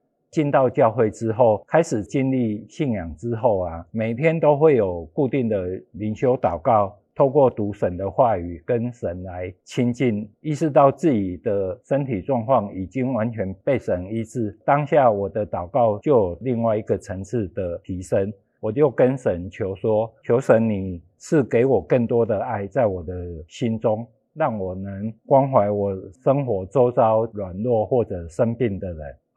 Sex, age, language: male, 50-69, Chinese